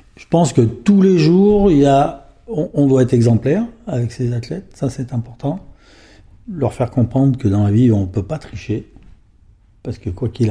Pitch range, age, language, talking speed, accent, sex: 115-145 Hz, 50-69, French, 200 wpm, French, male